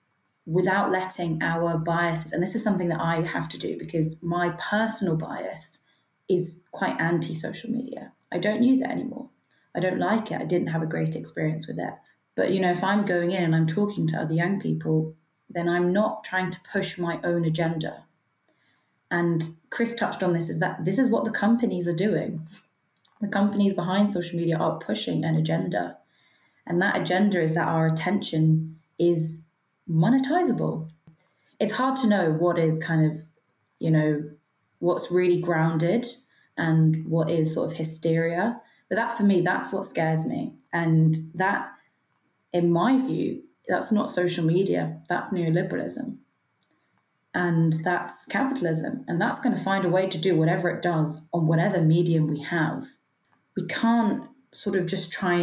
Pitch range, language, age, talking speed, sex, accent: 160-195 Hz, English, 20-39, 170 wpm, female, British